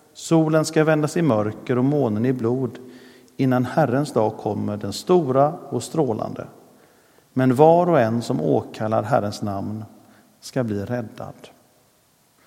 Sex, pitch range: male, 110-145 Hz